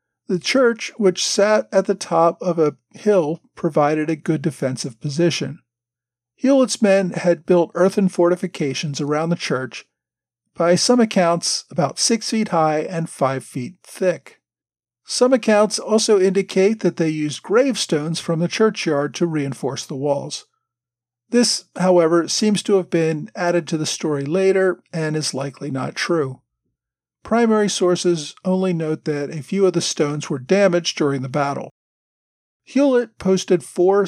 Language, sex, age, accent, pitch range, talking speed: English, male, 50-69, American, 150-205 Hz, 150 wpm